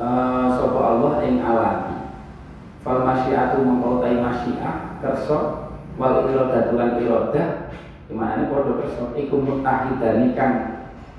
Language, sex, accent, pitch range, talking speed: Indonesian, male, native, 115-130 Hz, 100 wpm